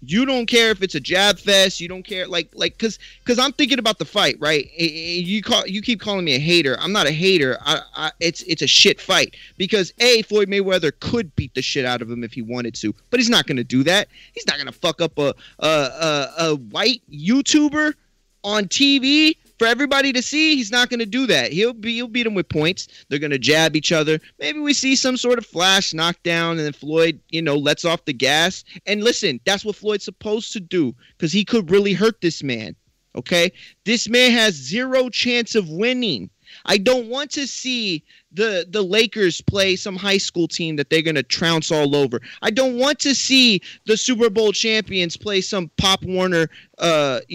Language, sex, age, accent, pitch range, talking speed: English, male, 30-49, American, 165-250 Hz, 220 wpm